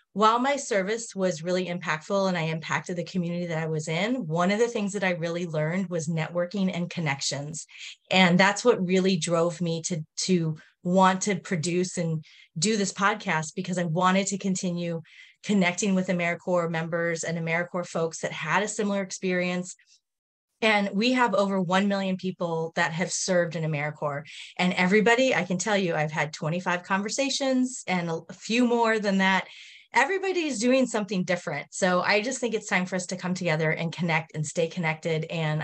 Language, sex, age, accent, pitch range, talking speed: English, female, 30-49, American, 160-200 Hz, 180 wpm